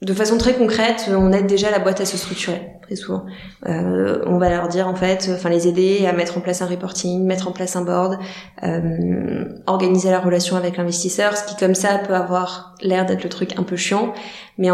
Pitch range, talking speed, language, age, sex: 185-220 Hz, 225 wpm, French, 20-39, female